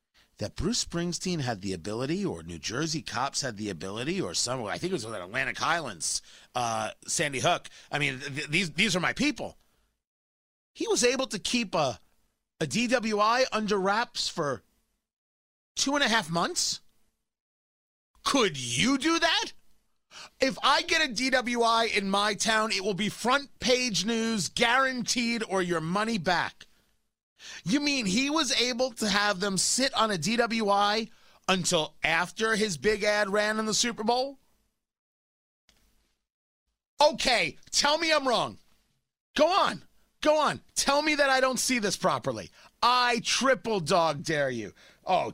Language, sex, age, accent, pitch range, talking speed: English, male, 30-49, American, 170-240 Hz, 160 wpm